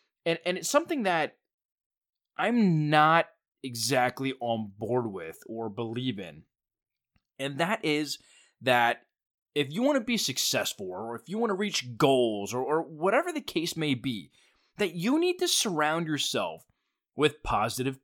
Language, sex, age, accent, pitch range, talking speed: English, male, 20-39, American, 115-175 Hz, 155 wpm